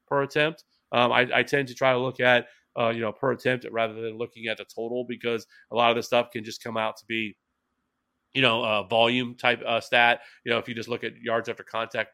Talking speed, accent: 250 wpm, American